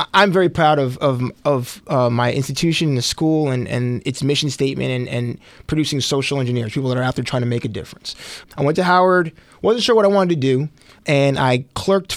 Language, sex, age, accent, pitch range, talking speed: English, male, 20-39, American, 125-160 Hz, 220 wpm